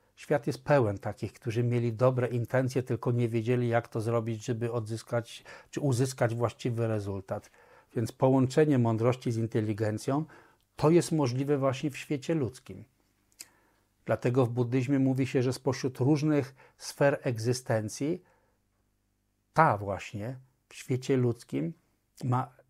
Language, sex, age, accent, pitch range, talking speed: Polish, male, 50-69, native, 115-140 Hz, 125 wpm